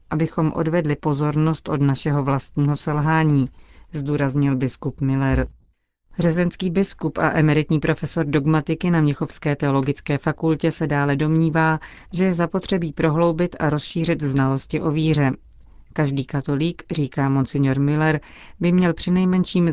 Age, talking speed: 30-49, 120 wpm